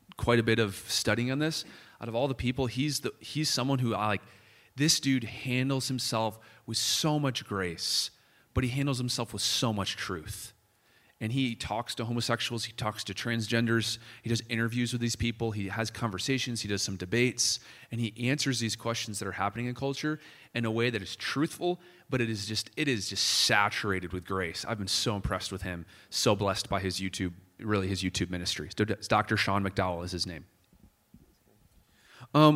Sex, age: male, 30-49